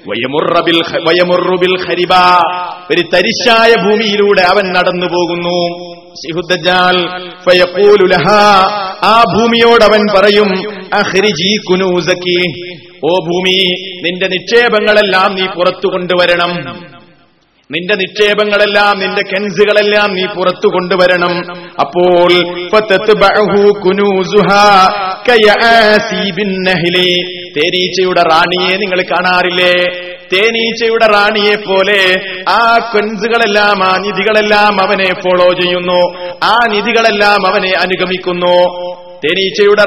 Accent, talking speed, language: native, 55 wpm, Malayalam